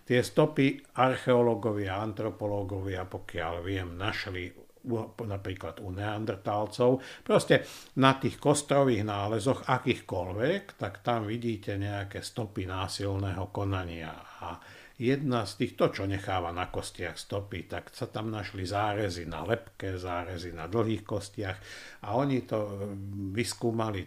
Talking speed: 120 wpm